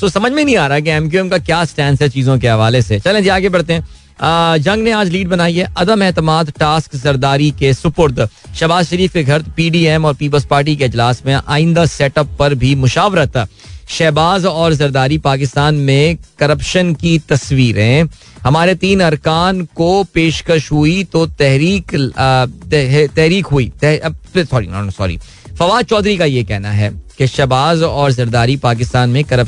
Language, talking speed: Hindi, 115 wpm